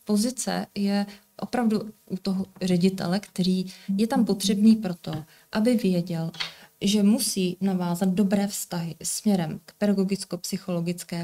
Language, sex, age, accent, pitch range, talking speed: Czech, female, 20-39, native, 180-205 Hz, 110 wpm